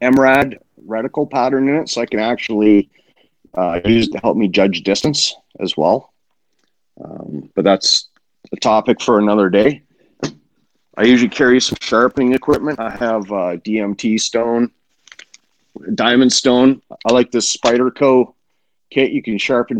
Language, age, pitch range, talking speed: English, 40-59, 105-125 Hz, 145 wpm